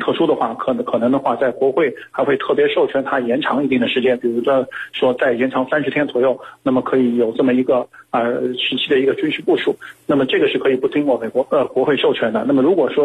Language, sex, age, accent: Chinese, male, 50-69, native